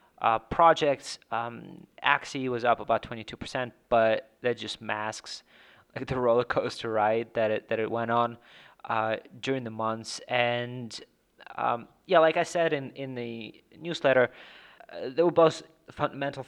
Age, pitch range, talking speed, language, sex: 30-49, 110-135 Hz, 160 wpm, English, male